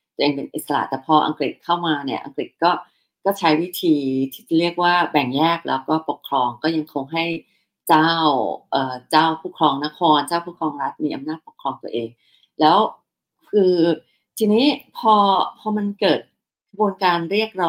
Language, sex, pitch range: Thai, female, 155-200 Hz